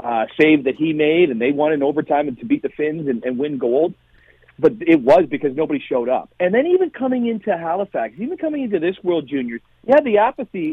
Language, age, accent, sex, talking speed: English, 40-59, American, male, 235 wpm